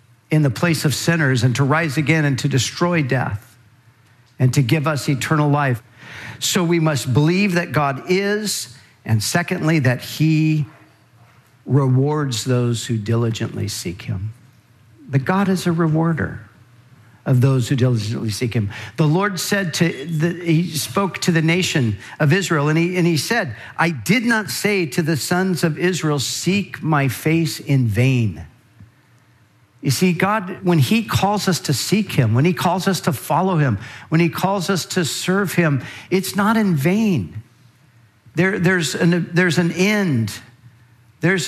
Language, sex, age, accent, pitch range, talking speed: English, male, 50-69, American, 120-175 Hz, 165 wpm